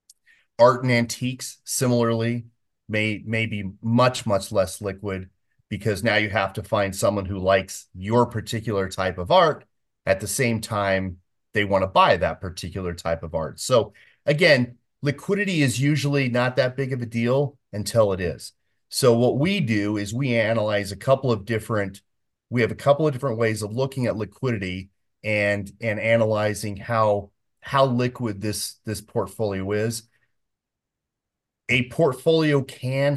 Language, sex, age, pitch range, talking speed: English, male, 30-49, 100-120 Hz, 155 wpm